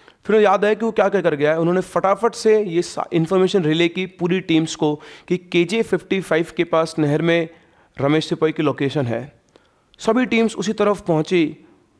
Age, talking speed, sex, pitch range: 30-49, 185 wpm, male, 145-185 Hz